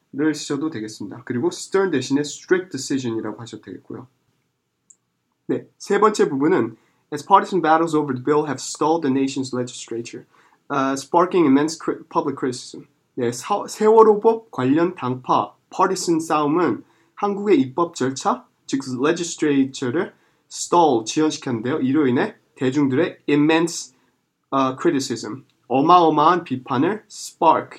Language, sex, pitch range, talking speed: English, male, 130-170 Hz, 115 wpm